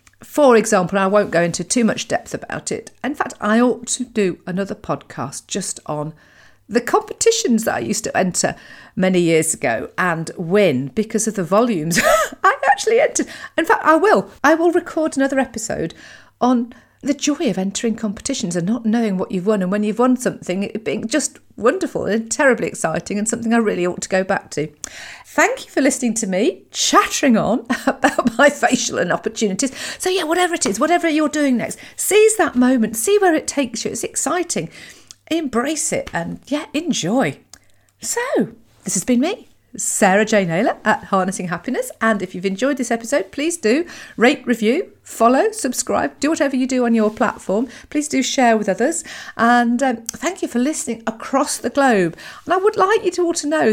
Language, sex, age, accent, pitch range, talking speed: English, female, 50-69, British, 210-290 Hz, 190 wpm